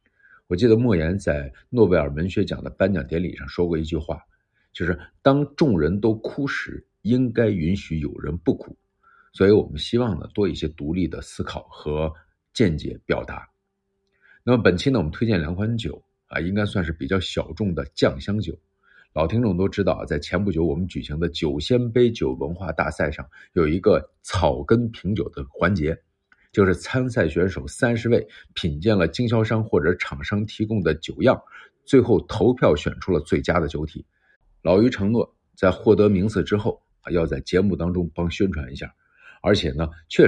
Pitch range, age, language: 80-110 Hz, 50-69, Chinese